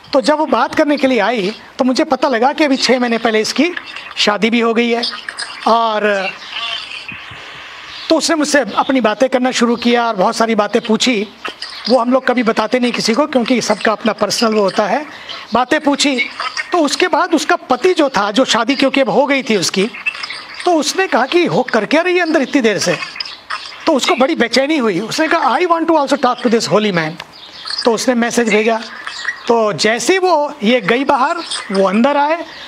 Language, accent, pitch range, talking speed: English, Indian, 225-300 Hz, 125 wpm